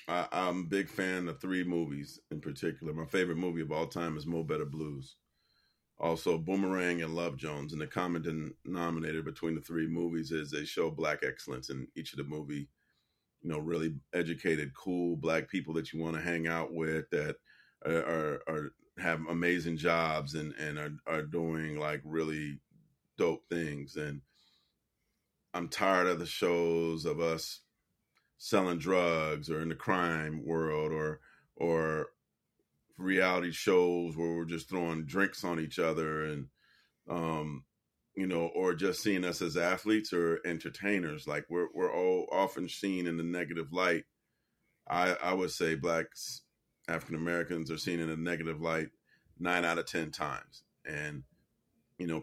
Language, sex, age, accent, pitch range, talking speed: English, male, 40-59, American, 80-85 Hz, 160 wpm